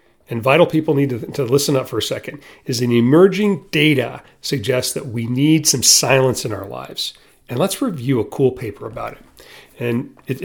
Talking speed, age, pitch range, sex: 195 wpm, 40-59, 115-150 Hz, male